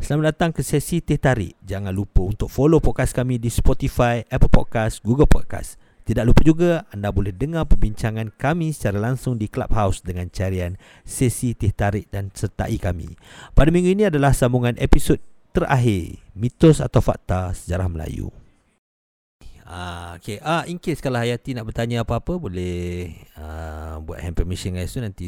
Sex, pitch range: male, 90-135 Hz